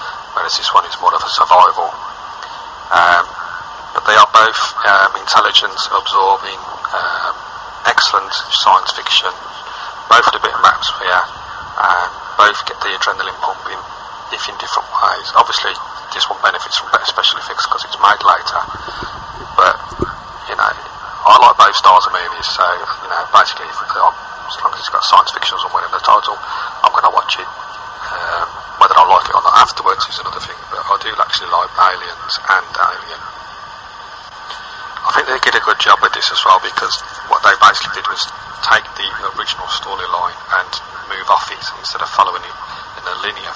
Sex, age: male, 30-49